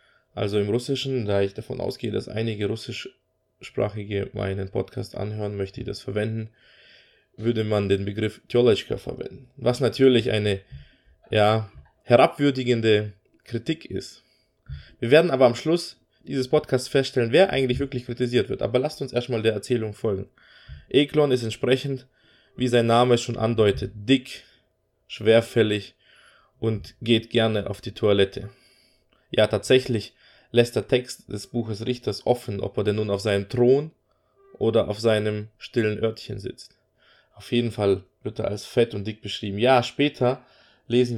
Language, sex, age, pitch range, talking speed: German, male, 20-39, 105-125 Hz, 145 wpm